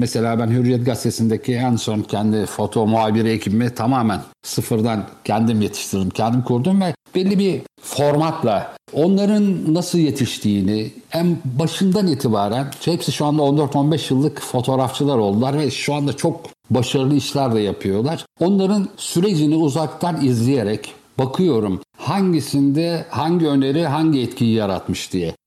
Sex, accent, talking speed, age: male, native, 125 wpm, 60-79